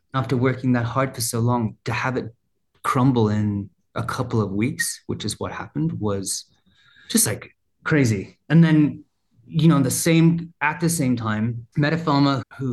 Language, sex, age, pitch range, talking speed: English, male, 30-49, 110-130 Hz, 175 wpm